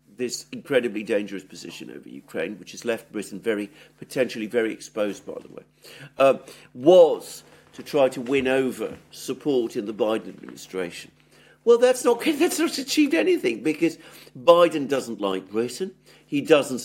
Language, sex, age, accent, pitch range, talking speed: English, male, 50-69, British, 105-155 Hz, 150 wpm